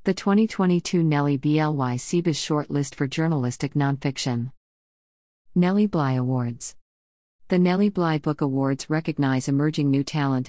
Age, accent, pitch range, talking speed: 50-69, American, 135-160 Hz, 120 wpm